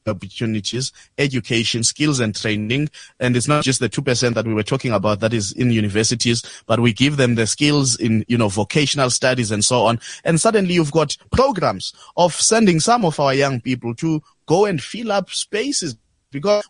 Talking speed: 195 wpm